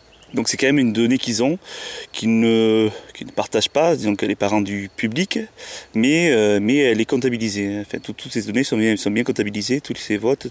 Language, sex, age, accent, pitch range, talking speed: French, male, 30-49, French, 105-120 Hz, 225 wpm